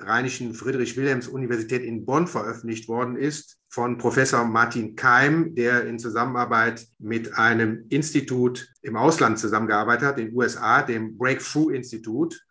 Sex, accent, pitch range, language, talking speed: male, German, 115-140 Hz, German, 120 wpm